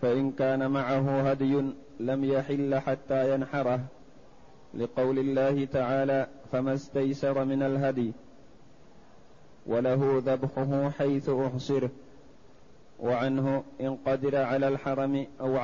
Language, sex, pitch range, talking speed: Arabic, male, 135-140 Hz, 95 wpm